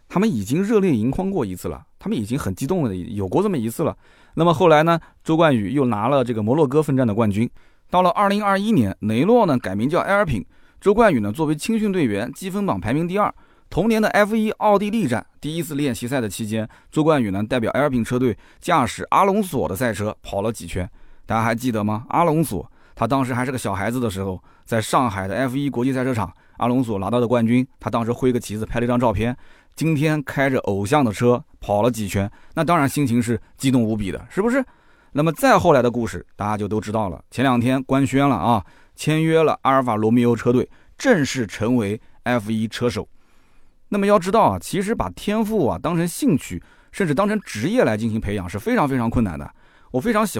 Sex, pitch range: male, 110-160 Hz